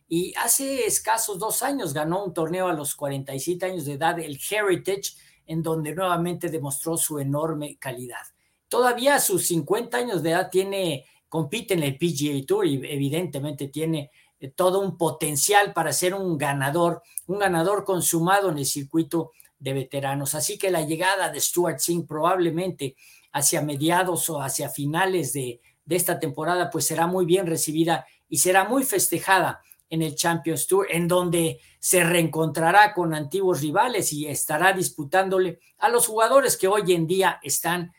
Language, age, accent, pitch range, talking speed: Spanish, 50-69, Mexican, 150-185 Hz, 160 wpm